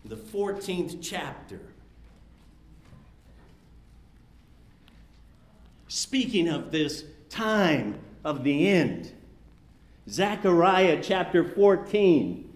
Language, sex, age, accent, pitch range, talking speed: English, male, 50-69, American, 165-225 Hz, 60 wpm